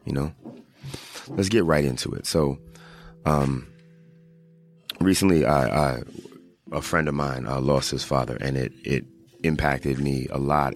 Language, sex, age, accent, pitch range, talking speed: English, male, 30-49, American, 70-80 Hz, 150 wpm